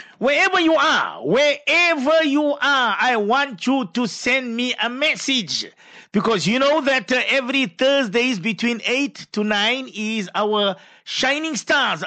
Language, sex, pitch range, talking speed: English, male, 205-260 Hz, 150 wpm